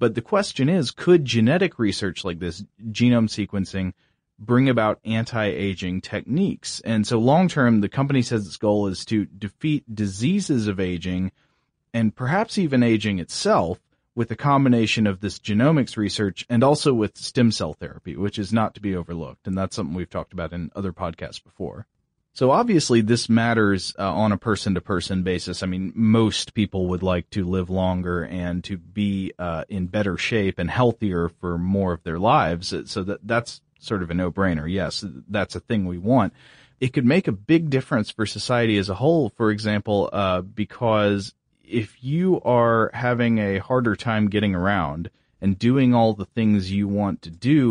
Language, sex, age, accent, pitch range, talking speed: English, male, 30-49, American, 95-120 Hz, 180 wpm